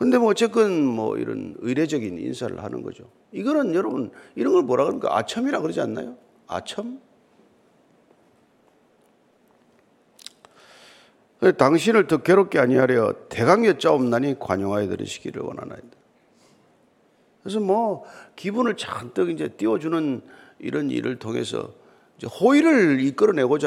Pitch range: 165-245 Hz